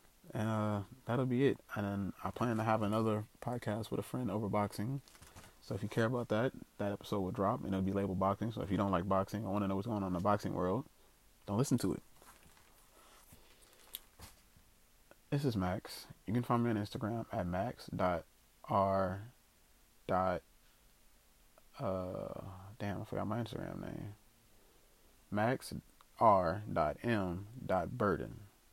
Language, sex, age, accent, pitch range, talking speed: English, male, 20-39, American, 95-110 Hz, 160 wpm